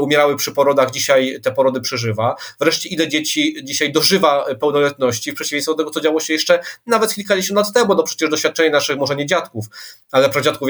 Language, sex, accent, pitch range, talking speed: Polish, male, native, 125-155 Hz, 190 wpm